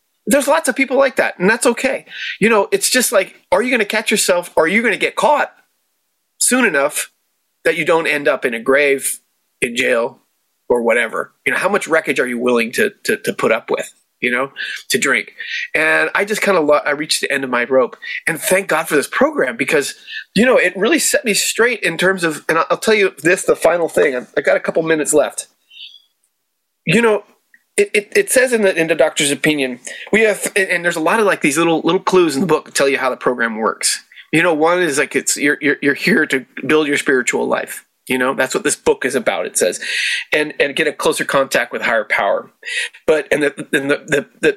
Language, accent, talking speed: English, American, 240 wpm